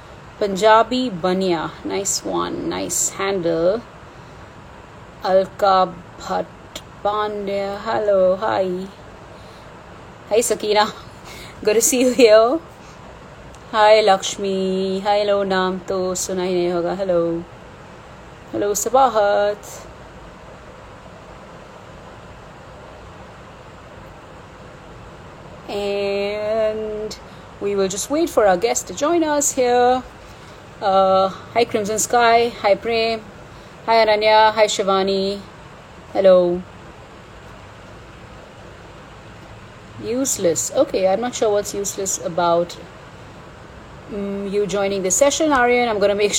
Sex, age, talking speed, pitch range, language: female, 30-49, 90 wpm, 195-230 Hz, English